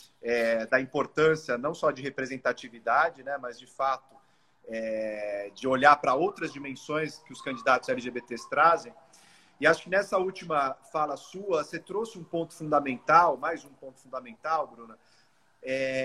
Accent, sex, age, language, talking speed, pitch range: Brazilian, male, 40-59, Portuguese, 150 wpm, 140-200 Hz